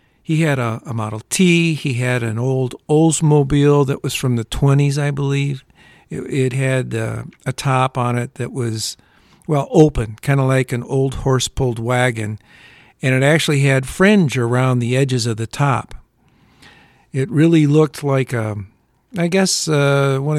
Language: English